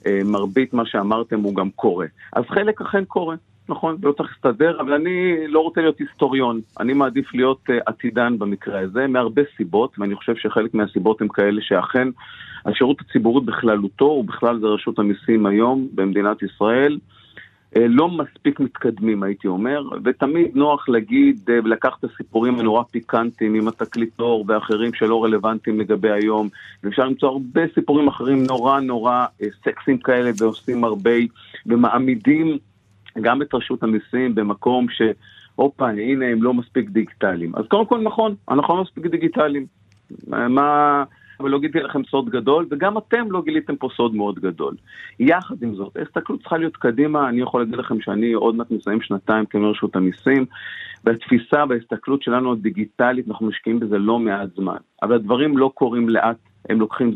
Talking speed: 150 wpm